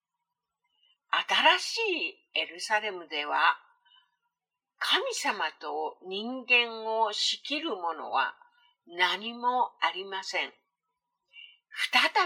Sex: female